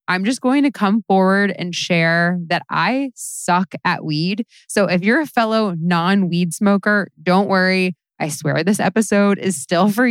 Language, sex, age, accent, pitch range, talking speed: English, female, 20-39, American, 165-215 Hz, 170 wpm